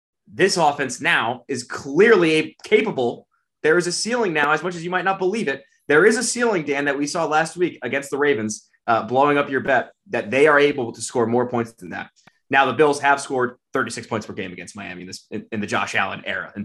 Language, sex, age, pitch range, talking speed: English, male, 20-39, 110-150 Hz, 240 wpm